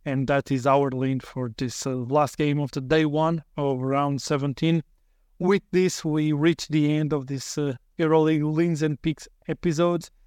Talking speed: 180 wpm